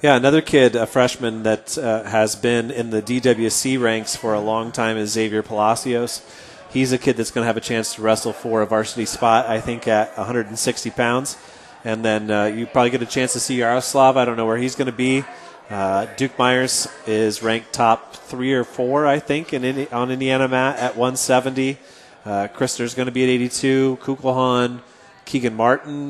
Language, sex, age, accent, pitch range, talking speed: English, male, 30-49, American, 115-130 Hz, 200 wpm